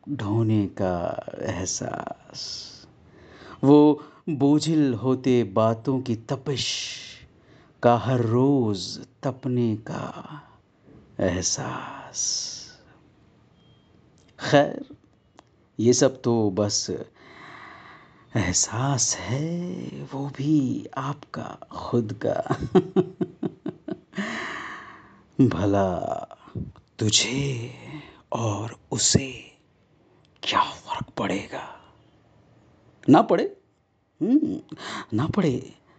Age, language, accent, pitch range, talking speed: 50-69, Hindi, native, 115-165 Hz, 65 wpm